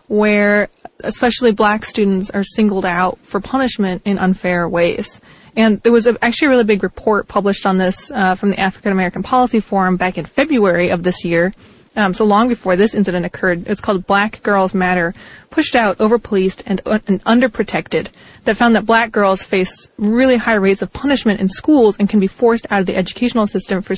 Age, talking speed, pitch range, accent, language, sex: 20-39, 195 wpm, 190-235 Hz, American, English, female